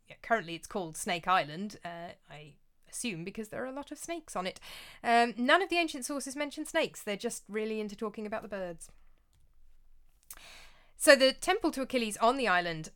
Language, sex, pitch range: English, female, 170-235 Hz